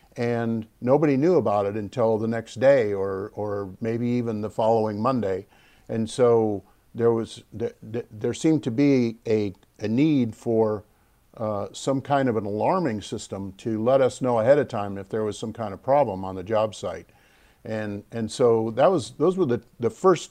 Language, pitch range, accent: English, 110-130 Hz, American